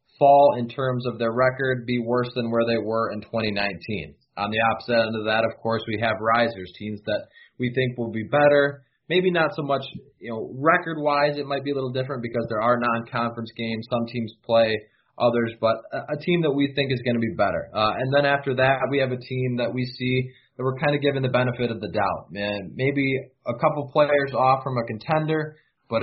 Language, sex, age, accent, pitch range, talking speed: English, male, 20-39, American, 110-130 Hz, 225 wpm